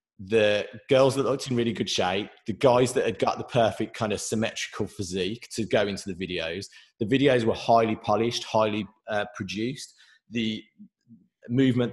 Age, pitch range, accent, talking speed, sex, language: 30-49, 105-135 Hz, British, 170 wpm, male, English